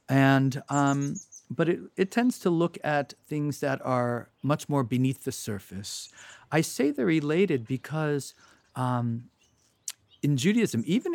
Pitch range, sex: 115-145 Hz, male